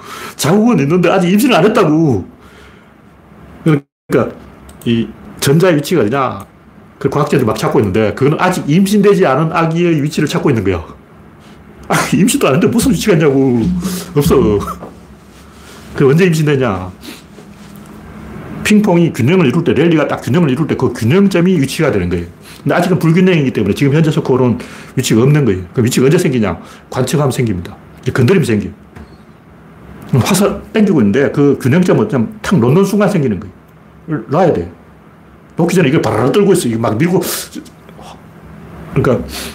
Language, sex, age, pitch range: Korean, male, 40-59, 110-175 Hz